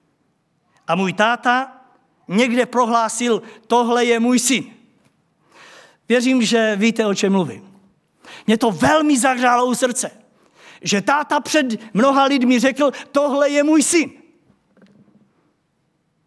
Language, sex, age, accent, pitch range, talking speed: Czech, male, 50-69, native, 185-255 Hz, 115 wpm